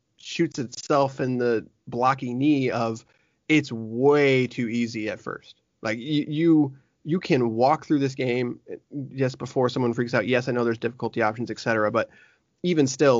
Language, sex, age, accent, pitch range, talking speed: English, male, 20-39, American, 125-155 Hz, 165 wpm